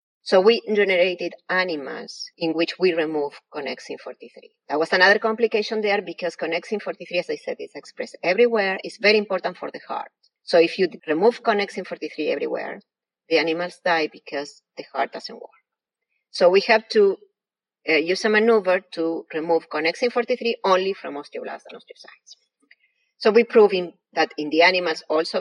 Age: 30-49